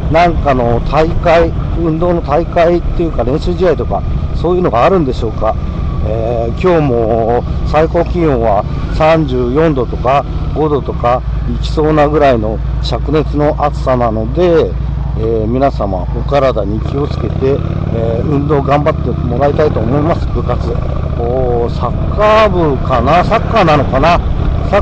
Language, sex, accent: Japanese, male, native